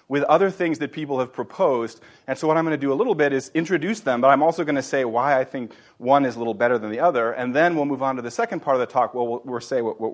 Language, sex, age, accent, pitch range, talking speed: English, male, 30-49, American, 125-160 Hz, 315 wpm